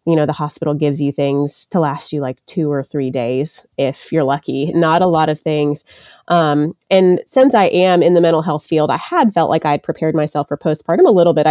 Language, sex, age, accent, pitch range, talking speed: English, female, 30-49, American, 140-165 Hz, 240 wpm